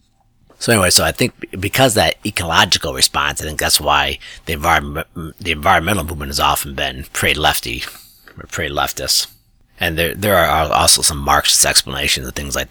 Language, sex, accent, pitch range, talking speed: English, male, American, 80-100 Hz, 175 wpm